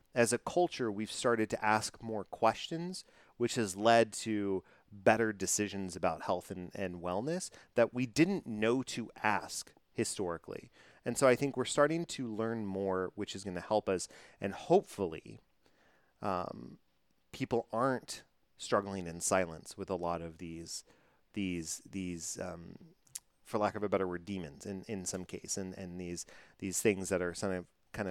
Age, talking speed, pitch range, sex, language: 30-49, 170 wpm, 90-120 Hz, male, English